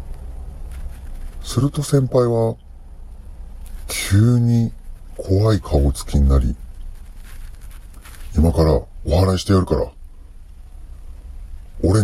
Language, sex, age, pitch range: Japanese, female, 40-59, 70-90 Hz